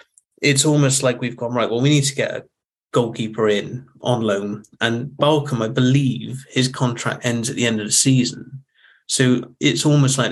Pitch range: 120-135 Hz